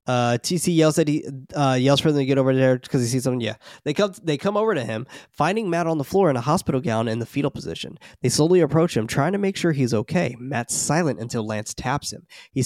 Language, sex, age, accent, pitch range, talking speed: English, male, 20-39, American, 125-170 Hz, 260 wpm